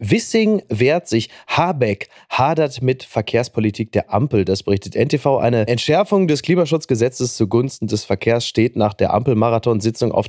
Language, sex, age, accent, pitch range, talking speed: German, male, 30-49, German, 115-155 Hz, 140 wpm